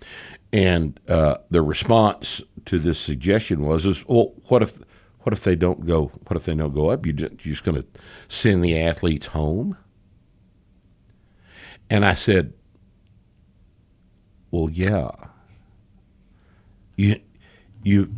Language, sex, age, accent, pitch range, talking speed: English, male, 60-79, American, 85-105 Hz, 130 wpm